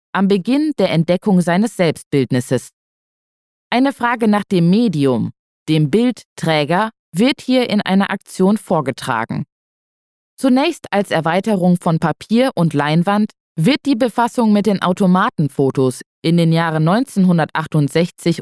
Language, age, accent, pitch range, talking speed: German, 20-39, German, 160-215 Hz, 115 wpm